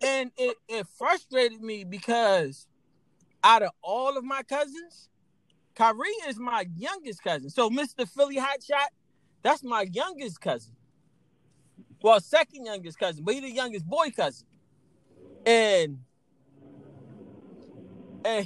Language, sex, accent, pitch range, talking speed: English, male, American, 225-305 Hz, 120 wpm